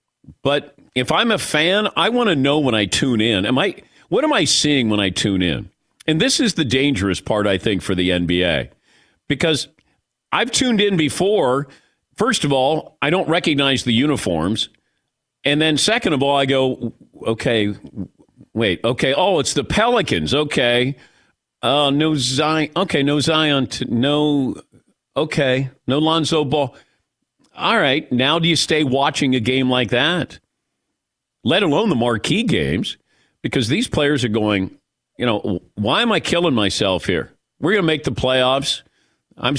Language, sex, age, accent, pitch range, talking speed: English, male, 50-69, American, 120-155 Hz, 165 wpm